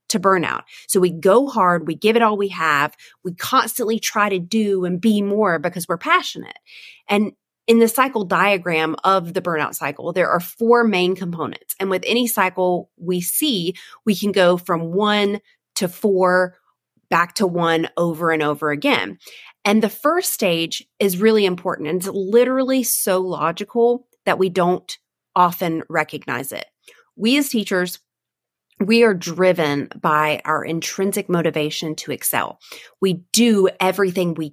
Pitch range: 170-220 Hz